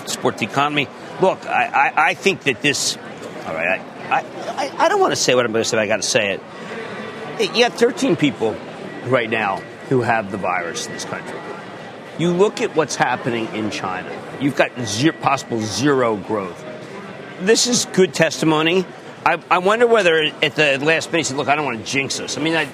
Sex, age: male, 40-59